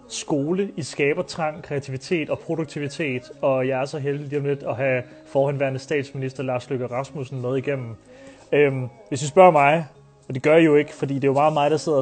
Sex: male